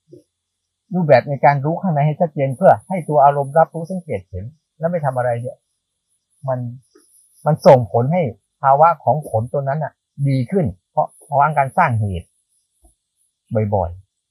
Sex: male